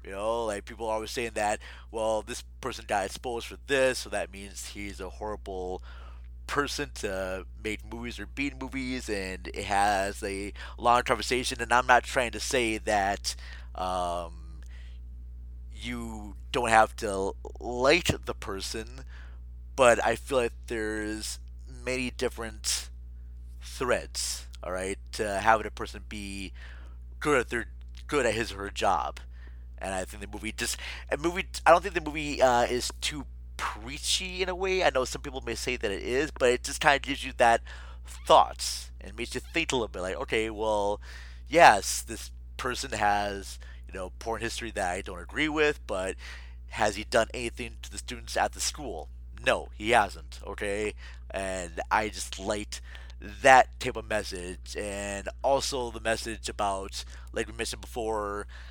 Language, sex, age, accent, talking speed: English, male, 30-49, American, 170 wpm